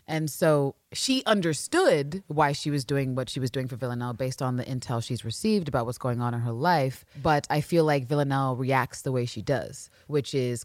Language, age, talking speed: English, 30-49, 220 wpm